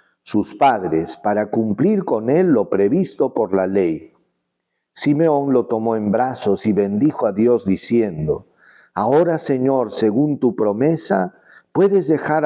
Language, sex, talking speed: Spanish, male, 135 wpm